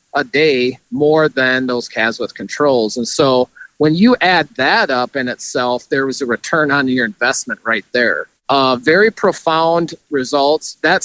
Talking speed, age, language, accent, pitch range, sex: 170 wpm, 40-59, English, American, 130-165 Hz, male